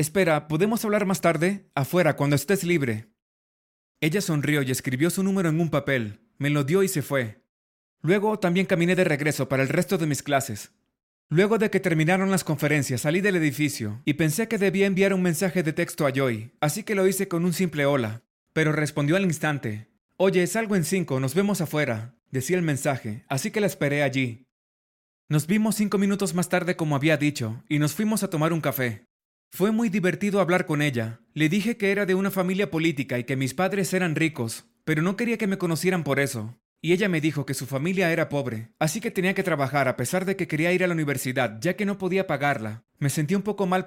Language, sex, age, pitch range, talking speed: Spanish, male, 30-49, 135-190 Hz, 220 wpm